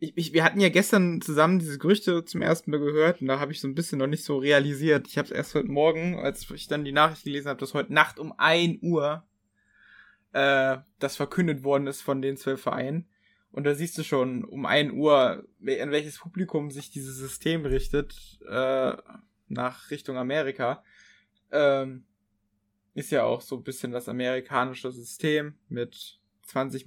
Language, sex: German, male